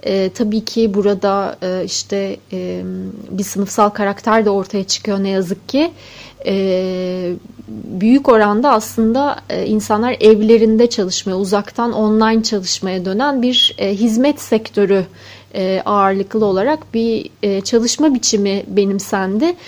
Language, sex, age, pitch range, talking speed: Turkish, female, 30-49, 205-245 Hz, 120 wpm